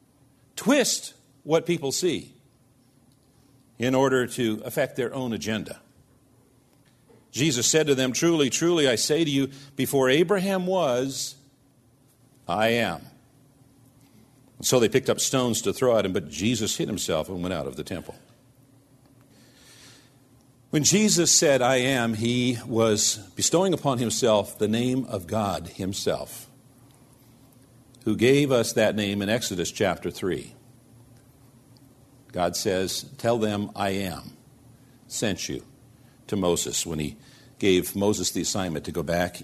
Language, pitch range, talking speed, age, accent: English, 105-135 Hz, 135 wpm, 50-69, American